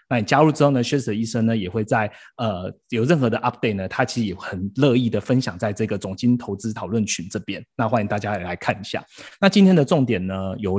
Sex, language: male, Chinese